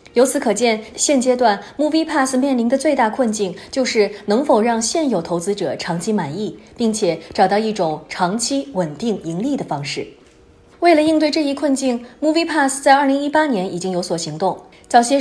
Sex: female